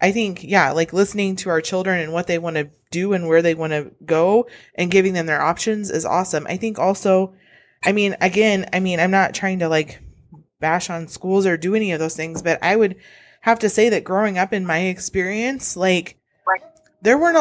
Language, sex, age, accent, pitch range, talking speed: English, female, 20-39, American, 175-225 Hz, 220 wpm